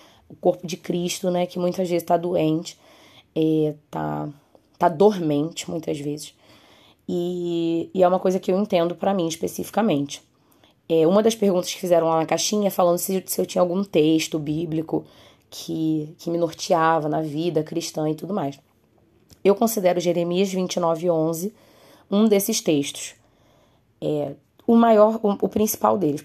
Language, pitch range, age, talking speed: Portuguese, 155-190 Hz, 20-39, 155 wpm